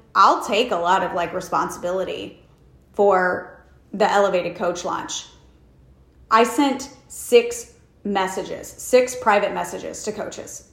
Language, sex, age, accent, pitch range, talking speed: English, female, 30-49, American, 180-280 Hz, 115 wpm